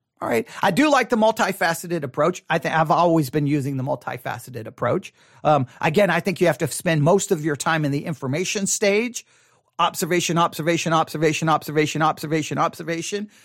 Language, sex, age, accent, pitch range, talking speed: English, male, 40-59, American, 150-210 Hz, 185 wpm